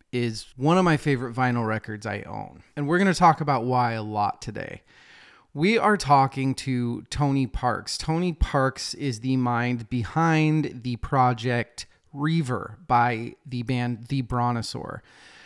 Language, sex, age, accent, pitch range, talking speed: English, male, 30-49, American, 120-145 Hz, 150 wpm